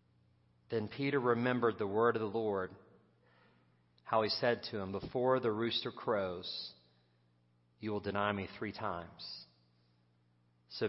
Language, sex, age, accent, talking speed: English, male, 40-59, American, 130 wpm